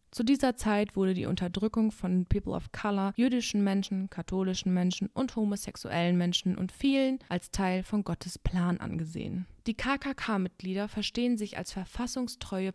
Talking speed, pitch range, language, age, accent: 145 wpm, 185-215 Hz, German, 20-39, German